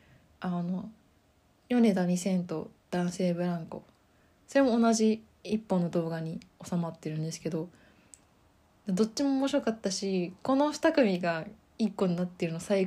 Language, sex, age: Japanese, female, 20-39